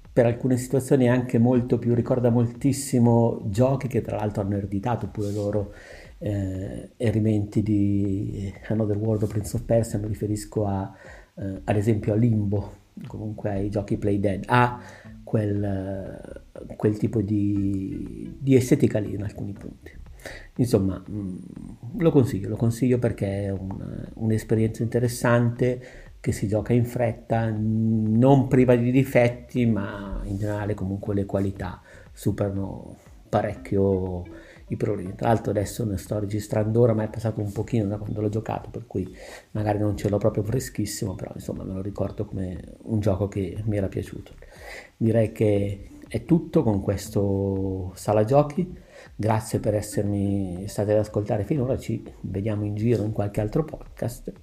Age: 50-69